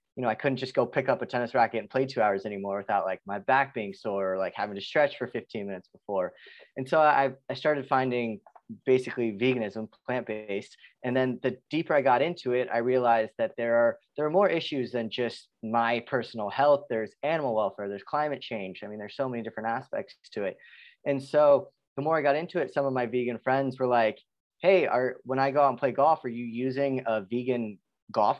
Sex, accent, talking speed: male, American, 225 wpm